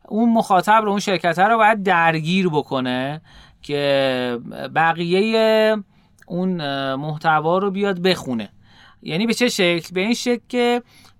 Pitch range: 145-200 Hz